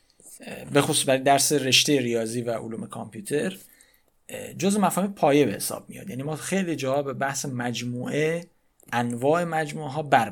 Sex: male